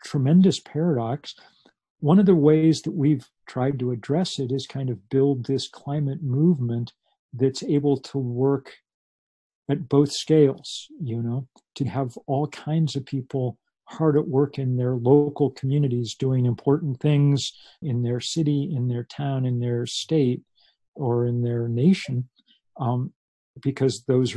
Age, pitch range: 50-69, 120-145 Hz